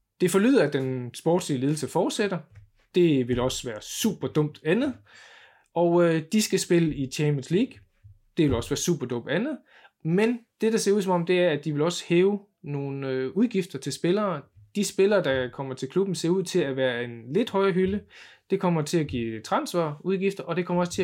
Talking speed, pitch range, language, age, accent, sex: 210 wpm, 135-185 Hz, Danish, 20-39, native, male